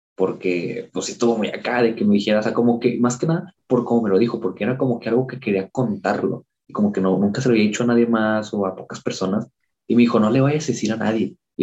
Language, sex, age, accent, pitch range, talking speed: Spanish, male, 20-39, Mexican, 105-130 Hz, 290 wpm